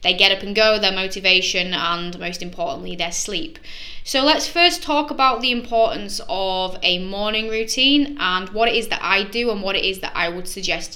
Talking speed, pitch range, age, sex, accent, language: 210 wpm, 175-225 Hz, 10-29, female, British, English